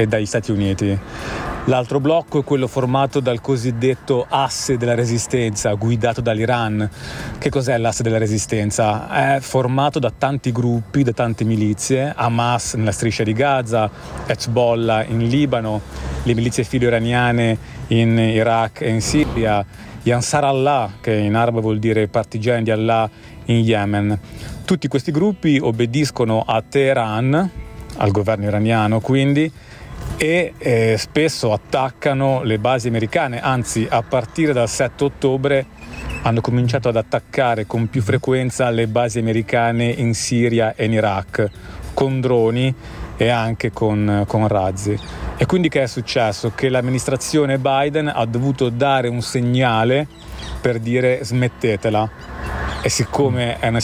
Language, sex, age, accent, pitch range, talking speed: Italian, male, 30-49, native, 110-130 Hz, 135 wpm